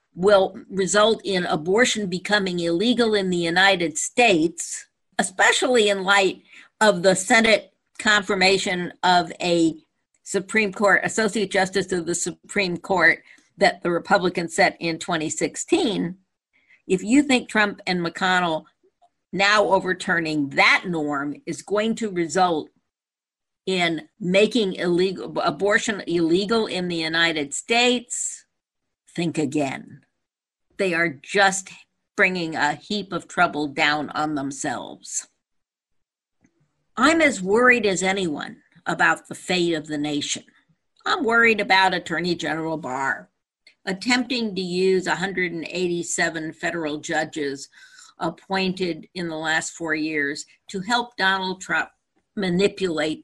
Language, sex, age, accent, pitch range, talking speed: English, female, 50-69, American, 165-205 Hz, 115 wpm